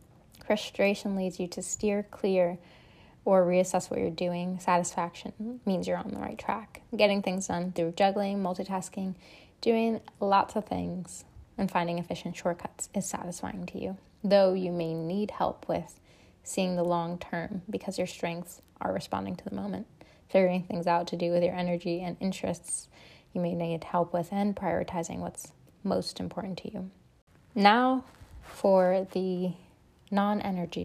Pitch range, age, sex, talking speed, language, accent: 175-205 Hz, 10-29, female, 155 wpm, English, American